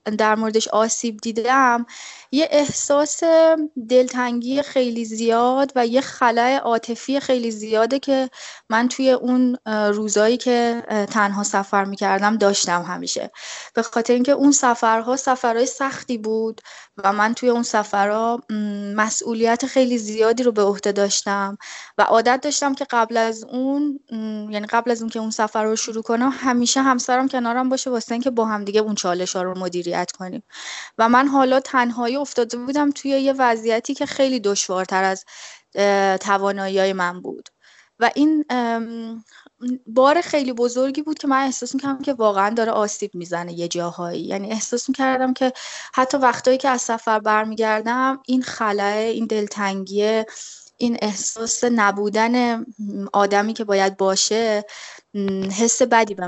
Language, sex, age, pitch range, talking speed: Persian, female, 10-29, 210-255 Hz, 145 wpm